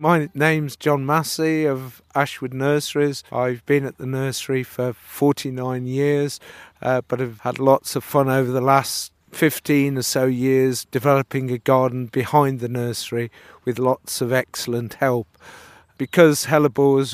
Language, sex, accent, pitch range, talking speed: English, male, British, 125-140 Hz, 145 wpm